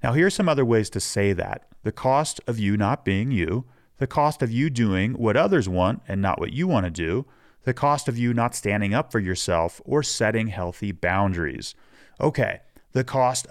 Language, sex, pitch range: English, male, 100-135 Hz